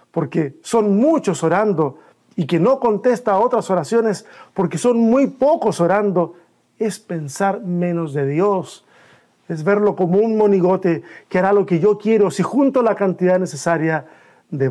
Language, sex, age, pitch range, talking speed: Spanish, male, 50-69, 170-220 Hz, 155 wpm